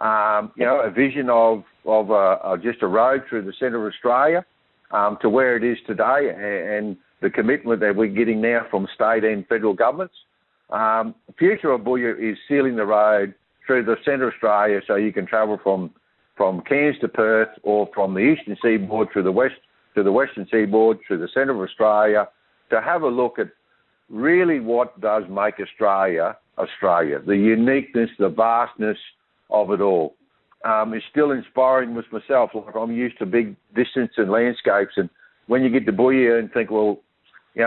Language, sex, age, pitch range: English, male, 60-79, 105-120 Hz